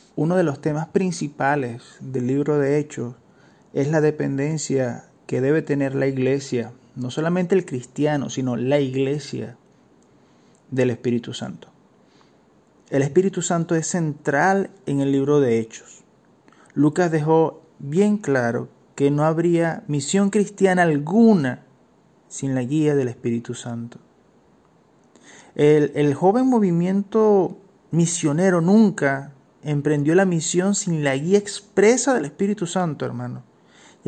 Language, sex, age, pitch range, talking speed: Spanish, male, 30-49, 130-170 Hz, 125 wpm